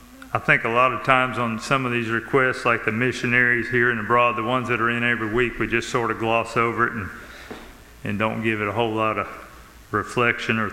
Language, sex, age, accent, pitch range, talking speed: English, male, 40-59, American, 115-130 Hz, 235 wpm